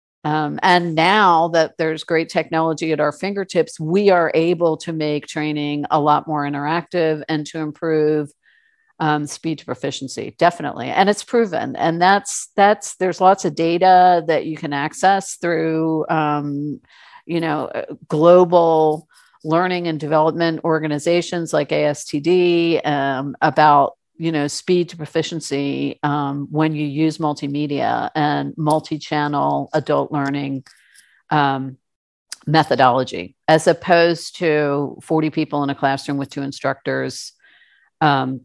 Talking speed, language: 130 wpm, English